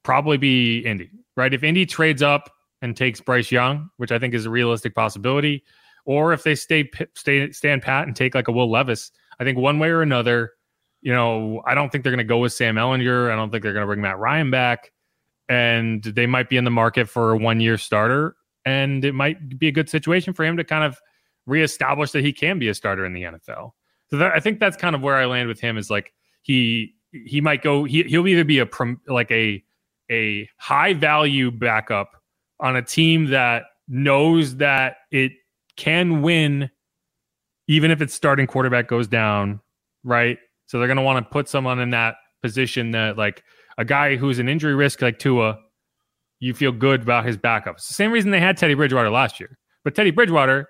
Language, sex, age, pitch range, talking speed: English, male, 30-49, 120-150 Hz, 210 wpm